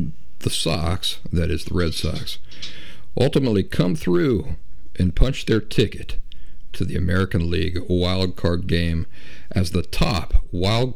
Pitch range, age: 80-100 Hz, 60-79